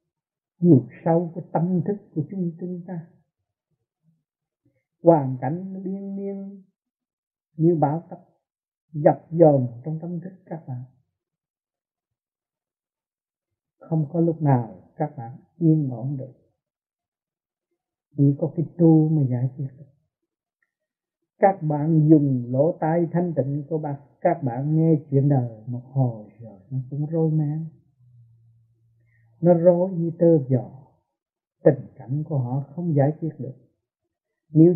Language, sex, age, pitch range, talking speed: Vietnamese, male, 60-79, 135-165 Hz, 130 wpm